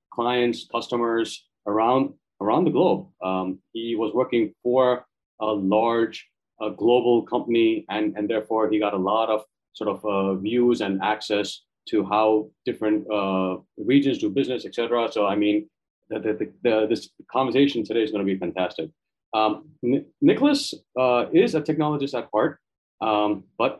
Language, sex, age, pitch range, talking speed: English, male, 30-49, 105-145 Hz, 160 wpm